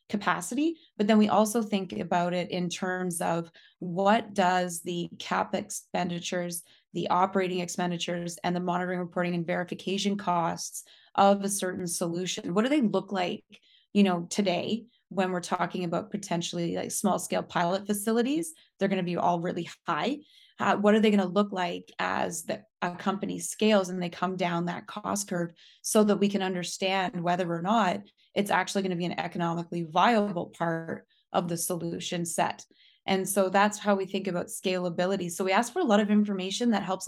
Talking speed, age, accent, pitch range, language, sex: 185 wpm, 20-39, American, 175-205 Hz, English, female